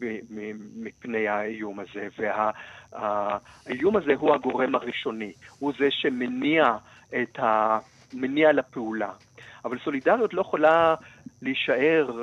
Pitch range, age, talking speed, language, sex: 120-140 Hz, 50-69, 105 wpm, Hebrew, male